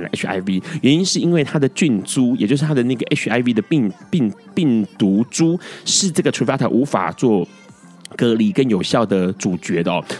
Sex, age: male, 30-49